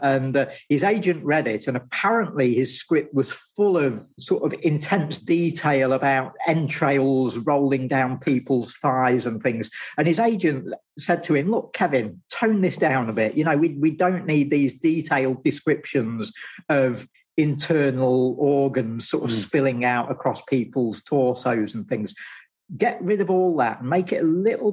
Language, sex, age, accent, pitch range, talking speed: English, male, 40-59, British, 125-160 Hz, 165 wpm